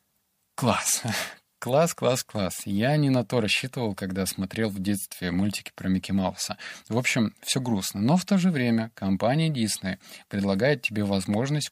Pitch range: 100-125 Hz